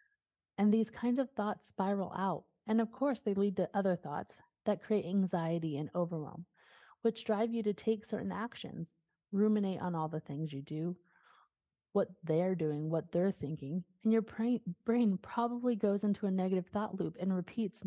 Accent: American